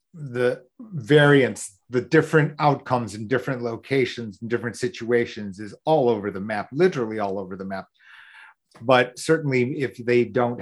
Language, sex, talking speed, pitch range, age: English, male, 145 wpm, 115-140 Hz, 40-59